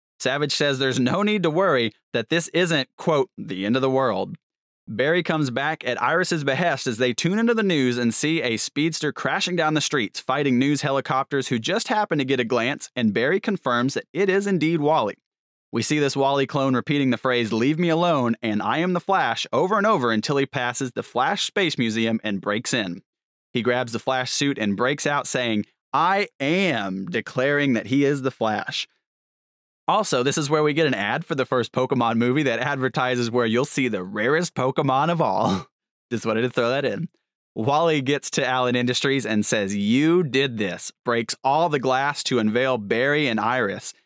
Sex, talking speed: male, 200 wpm